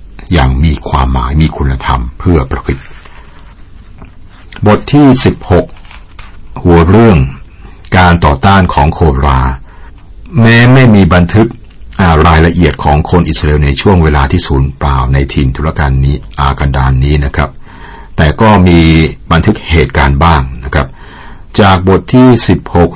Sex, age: male, 60-79